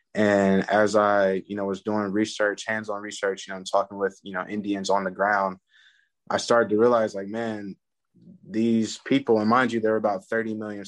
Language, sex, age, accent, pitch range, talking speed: English, male, 20-39, American, 95-110 Hz, 200 wpm